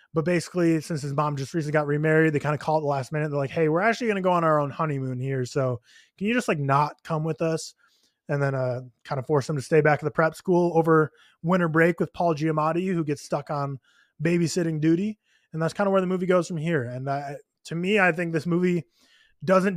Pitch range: 145-170 Hz